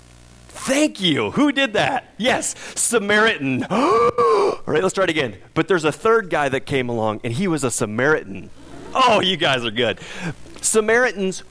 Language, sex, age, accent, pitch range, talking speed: English, male, 30-49, American, 125-180 Hz, 165 wpm